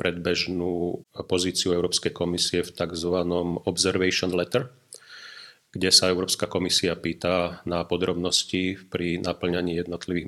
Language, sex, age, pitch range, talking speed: Slovak, male, 40-59, 85-95 Hz, 105 wpm